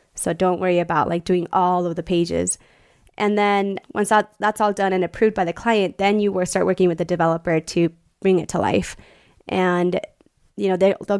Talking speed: 205 wpm